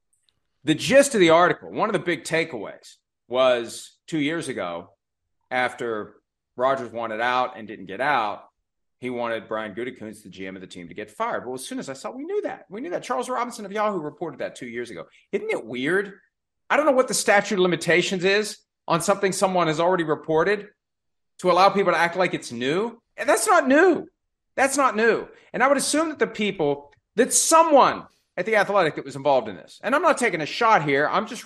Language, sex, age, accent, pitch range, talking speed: English, male, 40-59, American, 170-255 Hz, 215 wpm